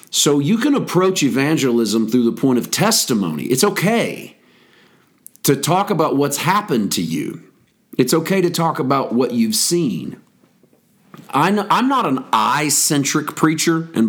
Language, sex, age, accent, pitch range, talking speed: English, male, 40-59, American, 115-155 Hz, 140 wpm